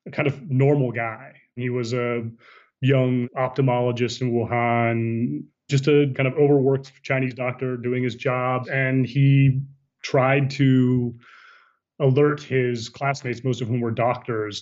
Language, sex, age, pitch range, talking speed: English, male, 30-49, 115-135 Hz, 140 wpm